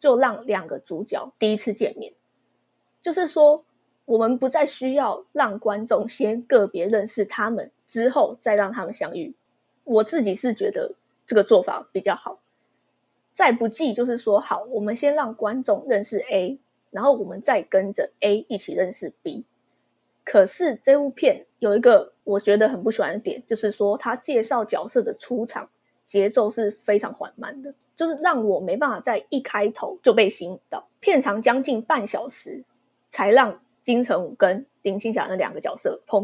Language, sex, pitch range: Chinese, female, 210-300 Hz